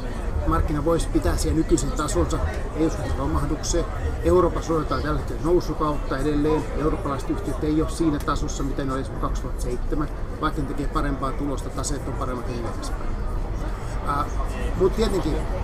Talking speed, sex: 140 wpm, male